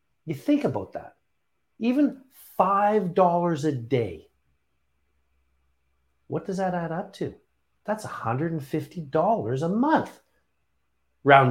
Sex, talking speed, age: male, 100 wpm, 50-69